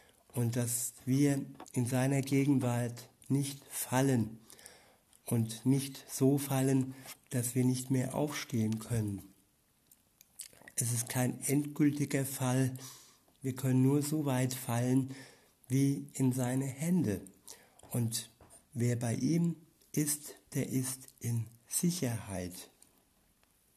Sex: male